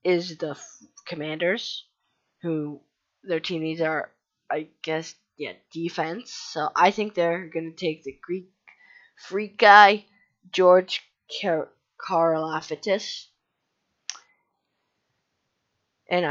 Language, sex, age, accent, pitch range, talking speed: English, female, 20-39, American, 155-190 Hz, 95 wpm